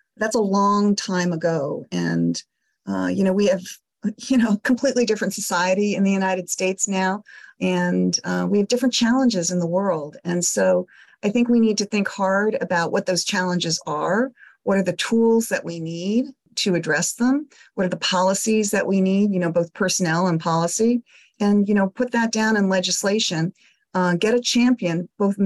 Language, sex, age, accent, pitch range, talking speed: English, female, 40-59, American, 180-230 Hz, 190 wpm